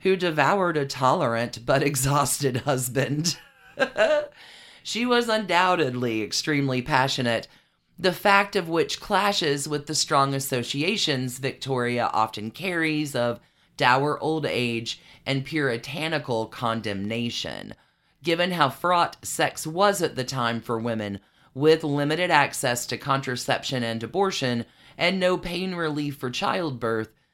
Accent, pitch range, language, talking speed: American, 125-170 Hz, English, 120 wpm